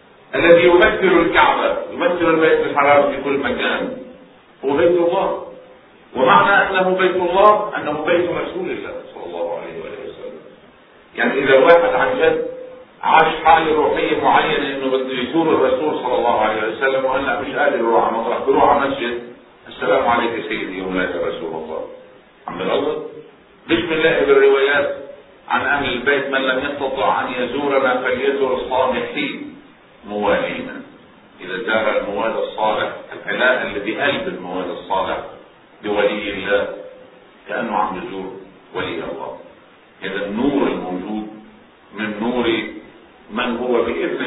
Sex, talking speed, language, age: male, 130 wpm, Arabic, 50-69